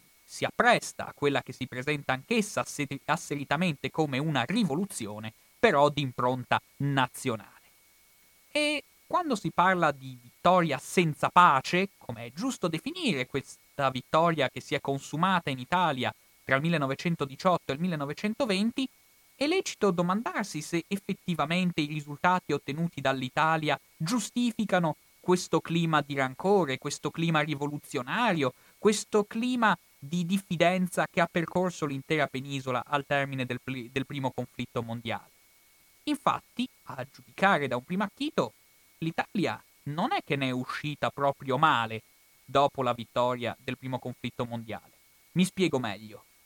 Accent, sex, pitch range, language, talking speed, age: native, male, 130-180 Hz, Italian, 130 wpm, 30-49